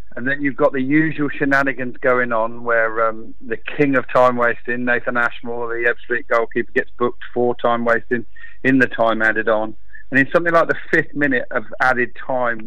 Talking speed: 190 wpm